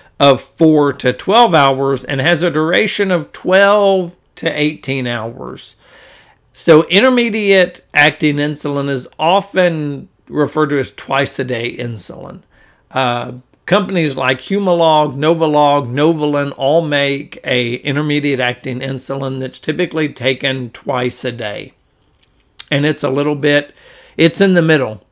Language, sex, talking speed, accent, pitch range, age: English, male, 125 wpm, American, 130-160 Hz, 50-69